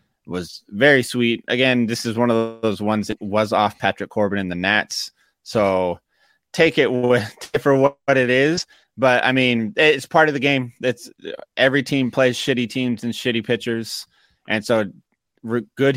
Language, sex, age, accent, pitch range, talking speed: English, male, 20-39, American, 105-125 Hz, 165 wpm